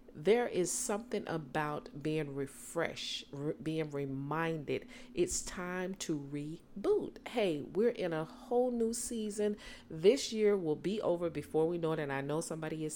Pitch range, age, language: 175-235 Hz, 40-59, English